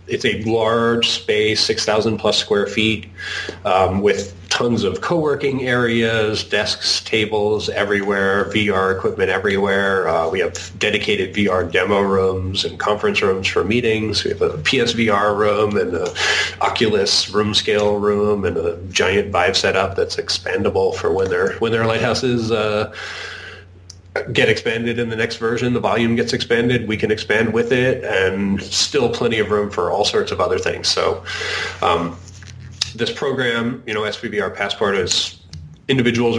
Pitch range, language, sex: 100-120 Hz, English, male